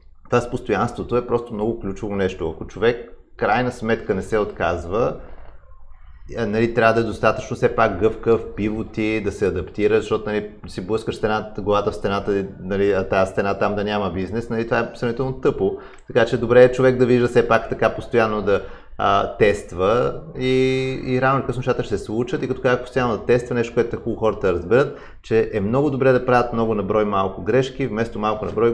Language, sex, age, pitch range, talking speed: Bulgarian, male, 30-49, 105-125 Hz, 195 wpm